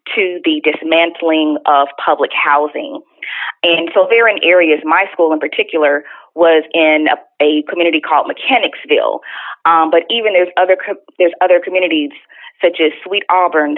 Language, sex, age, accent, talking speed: English, female, 30-49, American, 150 wpm